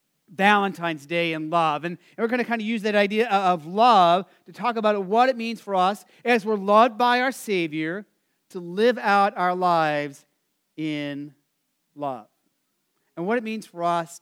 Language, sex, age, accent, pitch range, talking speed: English, male, 40-59, American, 185-230 Hz, 175 wpm